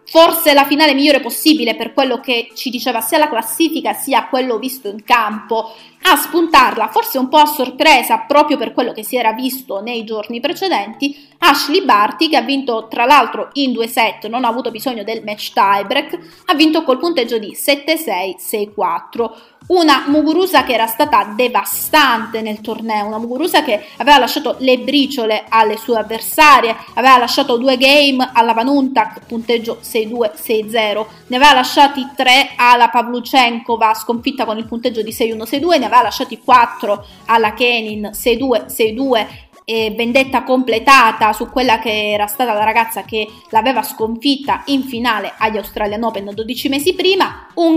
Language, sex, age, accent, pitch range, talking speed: Italian, female, 20-39, native, 225-280 Hz, 155 wpm